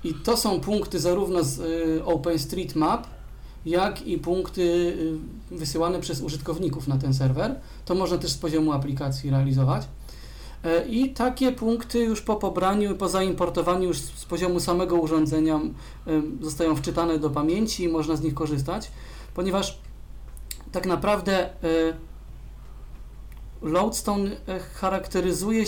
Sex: male